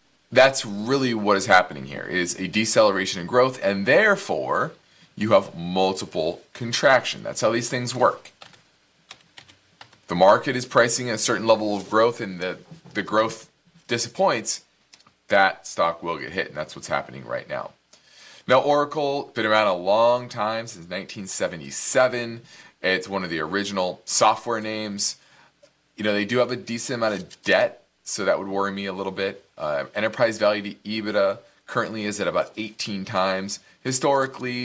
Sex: male